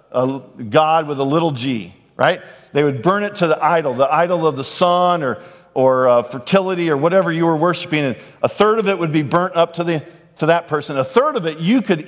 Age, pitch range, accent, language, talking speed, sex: 50-69, 160-200 Hz, American, English, 240 wpm, male